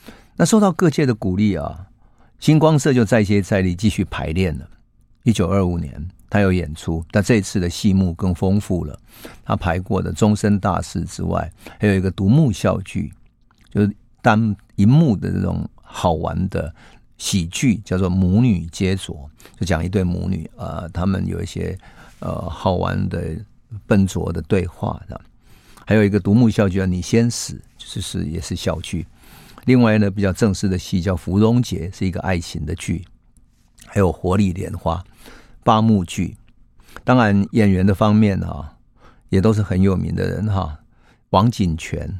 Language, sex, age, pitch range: Chinese, male, 50-69, 90-110 Hz